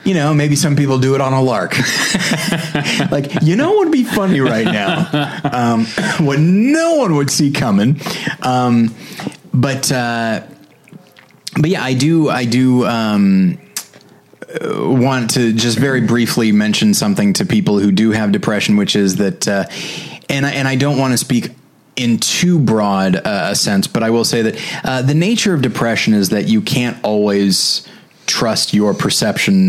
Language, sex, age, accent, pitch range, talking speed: English, male, 30-49, American, 100-150 Hz, 170 wpm